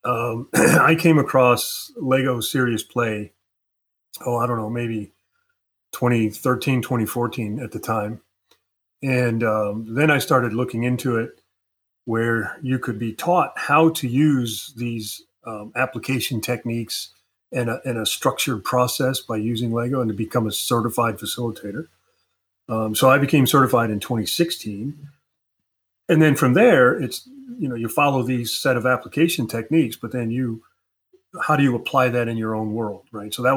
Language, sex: English, male